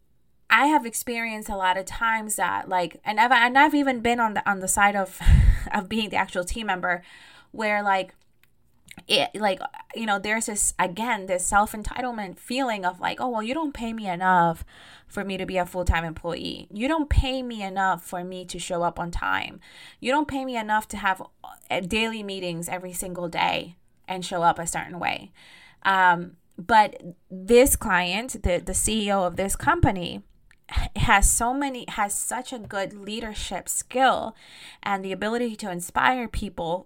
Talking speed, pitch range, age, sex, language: 180 wpm, 180-235 Hz, 20-39, female, English